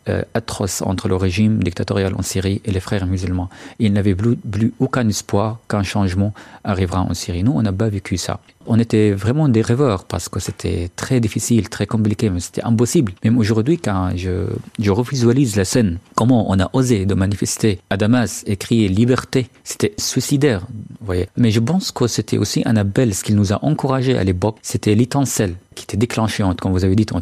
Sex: male